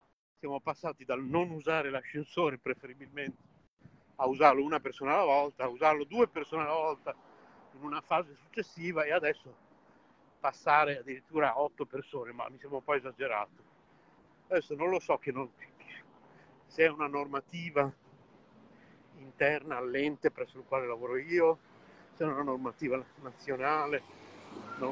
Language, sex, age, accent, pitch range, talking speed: Italian, male, 60-79, native, 135-180 Hz, 140 wpm